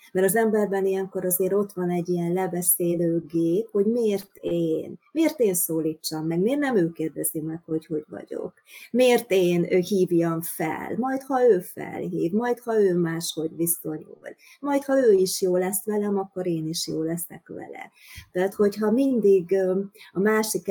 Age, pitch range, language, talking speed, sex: 30-49, 170-200 Hz, Hungarian, 165 wpm, female